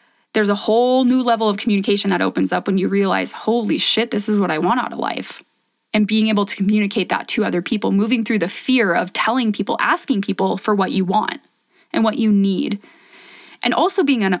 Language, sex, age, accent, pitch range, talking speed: English, female, 20-39, American, 200-245 Hz, 215 wpm